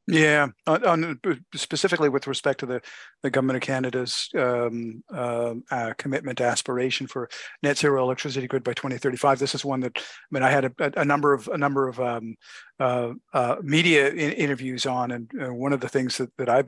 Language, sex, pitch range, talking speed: English, male, 125-145 Hz, 200 wpm